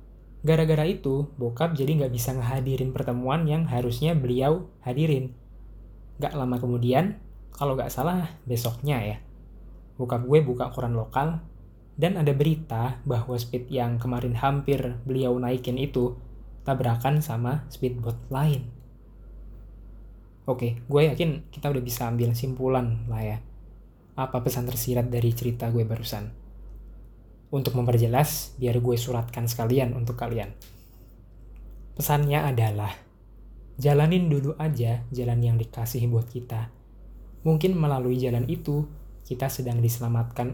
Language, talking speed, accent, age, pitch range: Indonesian, 120 wpm, native, 20-39, 120-145 Hz